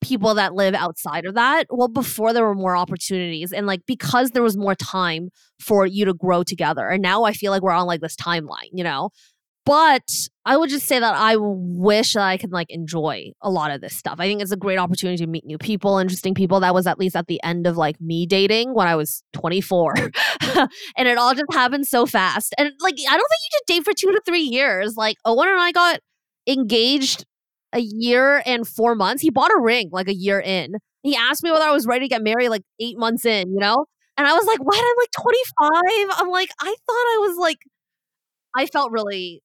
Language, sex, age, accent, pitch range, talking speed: English, female, 20-39, American, 190-280 Hz, 235 wpm